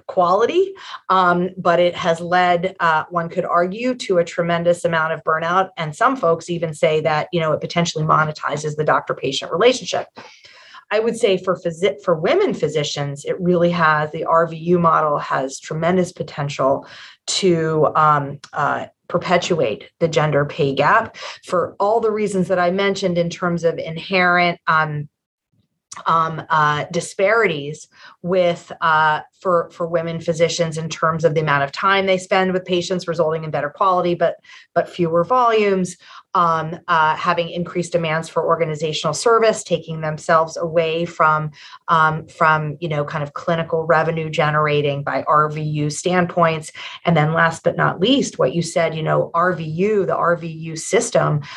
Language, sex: English, female